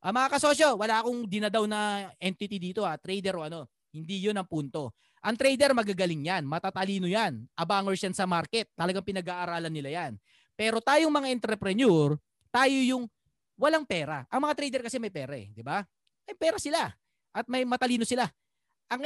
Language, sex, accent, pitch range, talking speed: Filipino, male, native, 175-255 Hz, 170 wpm